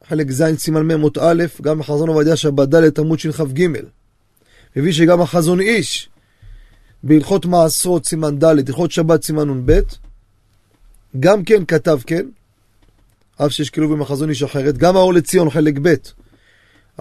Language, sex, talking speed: Hebrew, male, 140 wpm